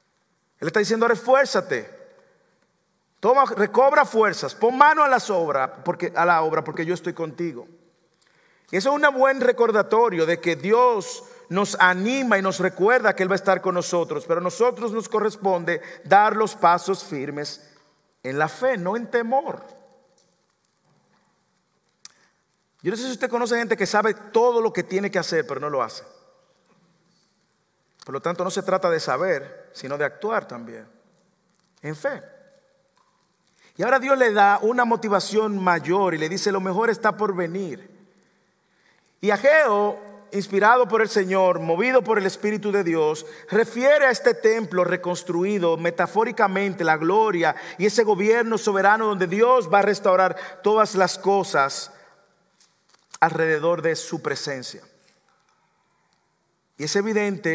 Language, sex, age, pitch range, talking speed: English, male, 50-69, 175-230 Hz, 145 wpm